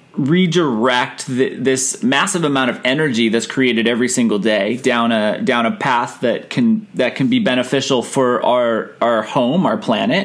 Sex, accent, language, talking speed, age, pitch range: male, American, English, 165 wpm, 30-49, 130-175 Hz